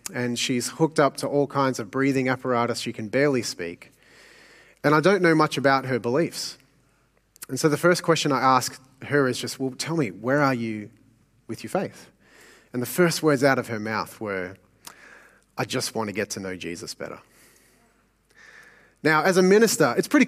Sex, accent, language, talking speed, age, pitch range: male, Australian, English, 190 wpm, 30-49, 130-180 Hz